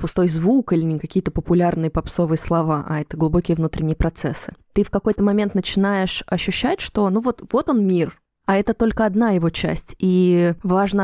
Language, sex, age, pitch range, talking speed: Russian, female, 20-39, 175-210 Hz, 180 wpm